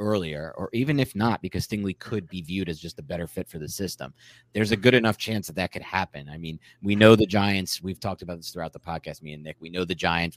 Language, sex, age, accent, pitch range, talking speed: English, male, 30-49, American, 85-125 Hz, 270 wpm